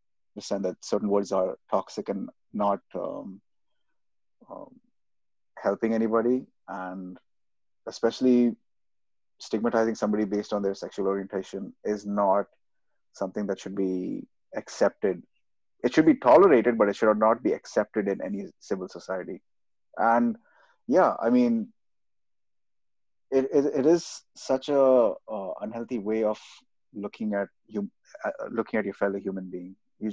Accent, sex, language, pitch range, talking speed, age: Indian, male, English, 100-125 Hz, 135 wpm, 30-49